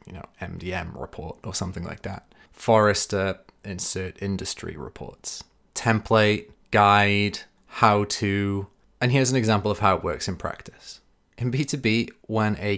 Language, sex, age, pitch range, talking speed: English, male, 20-39, 95-115 Hz, 140 wpm